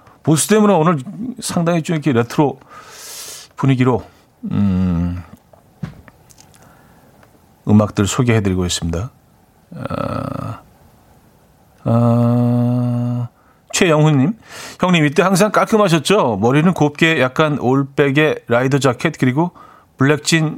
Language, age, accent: Korean, 40-59, native